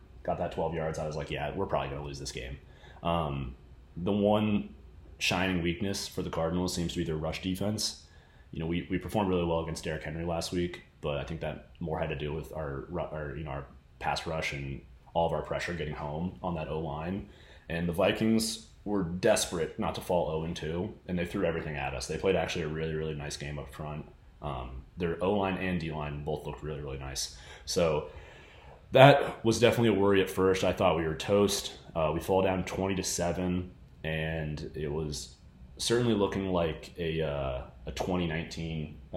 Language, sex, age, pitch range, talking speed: English, male, 30-49, 75-95 Hz, 200 wpm